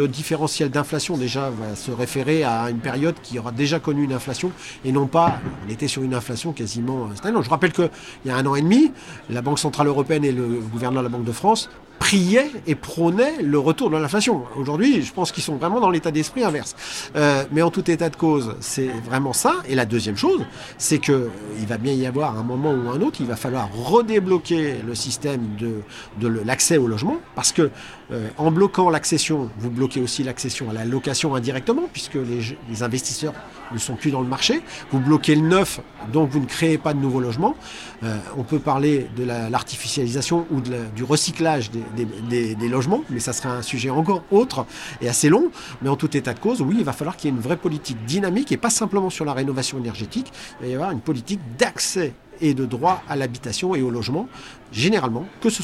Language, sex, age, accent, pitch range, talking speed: French, male, 50-69, French, 125-160 Hz, 225 wpm